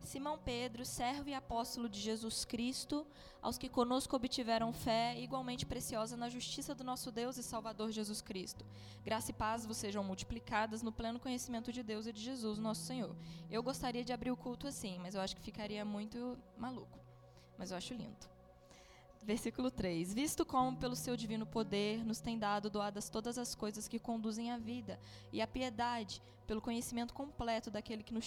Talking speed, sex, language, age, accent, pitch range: 185 wpm, female, Gujarati, 10-29, Brazilian, 215-255 Hz